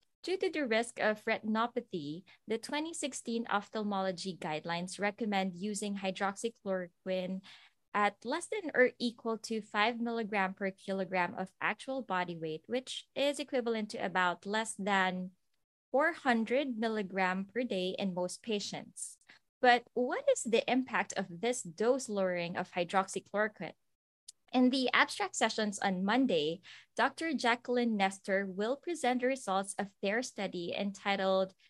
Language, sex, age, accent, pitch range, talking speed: English, female, 20-39, Filipino, 190-245 Hz, 130 wpm